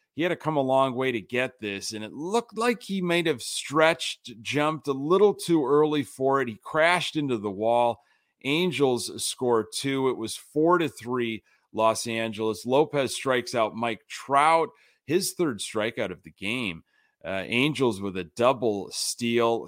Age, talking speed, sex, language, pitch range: 30-49, 175 wpm, male, English, 110-145 Hz